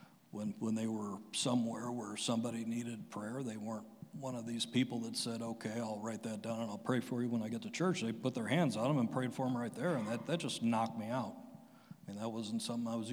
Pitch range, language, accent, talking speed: 115-130 Hz, English, American, 265 wpm